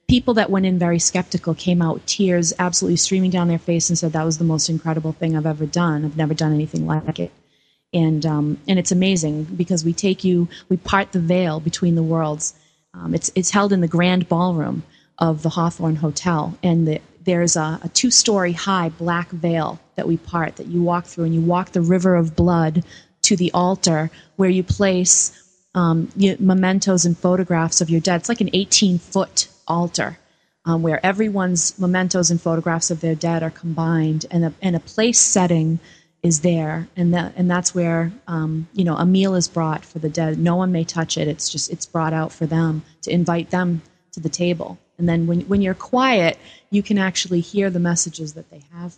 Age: 30-49